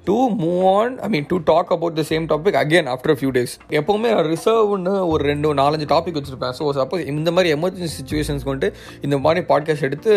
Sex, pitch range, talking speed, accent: male, 135-170 Hz, 200 wpm, native